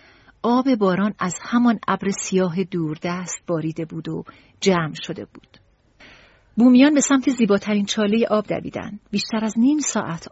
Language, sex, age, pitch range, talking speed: Persian, female, 40-59, 165-215 Hz, 140 wpm